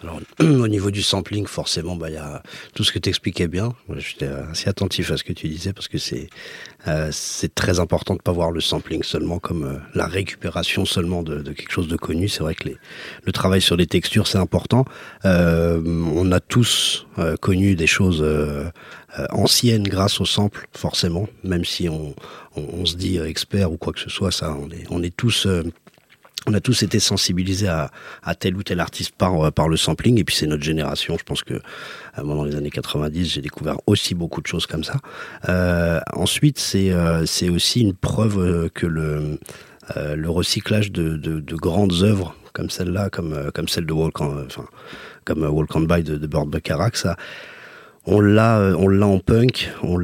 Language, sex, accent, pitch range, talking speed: French, male, French, 80-95 Hz, 205 wpm